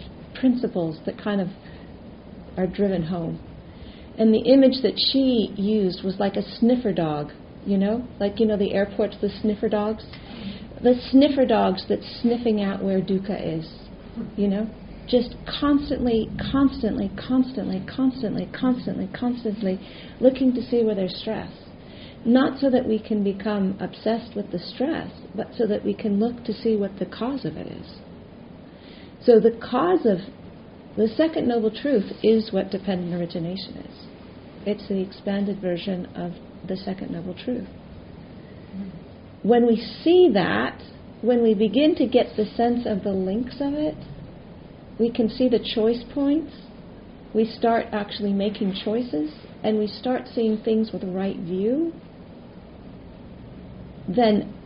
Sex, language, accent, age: female, English, American, 40-59